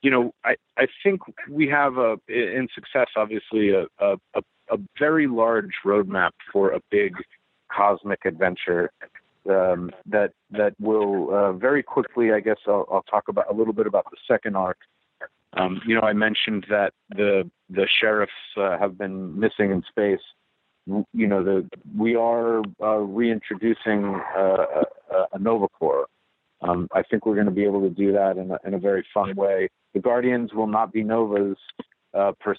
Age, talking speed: 50-69, 175 wpm